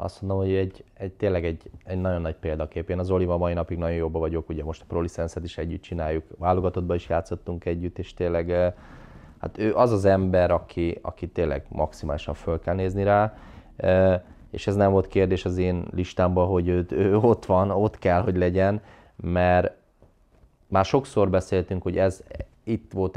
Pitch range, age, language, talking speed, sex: 85-100 Hz, 20-39, Hungarian, 180 wpm, male